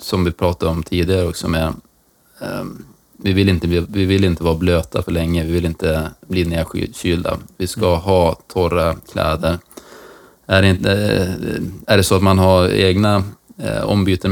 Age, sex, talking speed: 20-39, male, 155 wpm